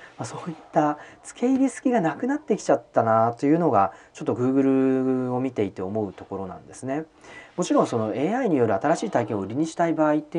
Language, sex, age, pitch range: Japanese, male, 40-59, 110-165 Hz